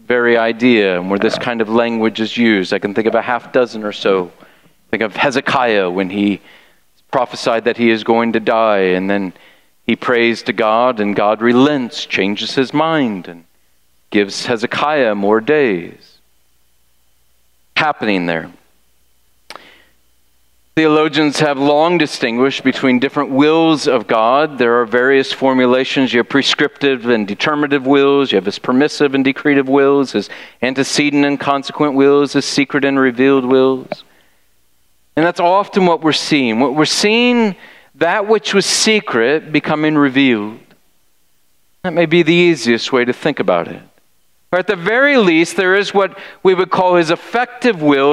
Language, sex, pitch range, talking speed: English, male, 105-155 Hz, 155 wpm